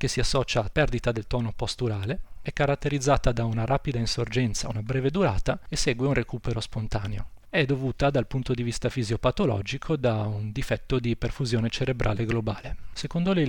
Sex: male